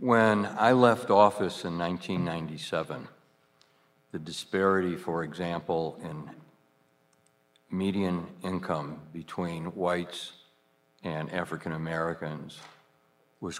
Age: 60-79